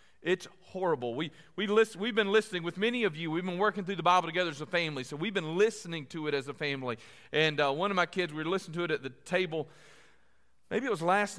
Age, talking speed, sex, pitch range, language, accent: 40-59, 255 wpm, male, 170-275 Hz, English, American